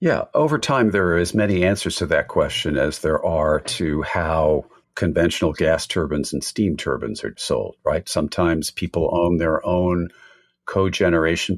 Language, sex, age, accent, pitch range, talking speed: English, male, 50-69, American, 80-100 Hz, 160 wpm